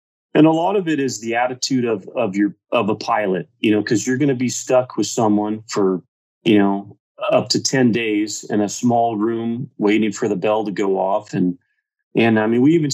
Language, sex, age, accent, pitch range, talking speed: English, male, 30-49, American, 105-130 Hz, 225 wpm